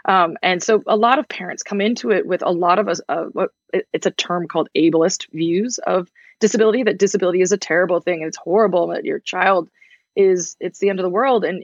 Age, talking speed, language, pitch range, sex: 20-39, 230 wpm, English, 175-215 Hz, female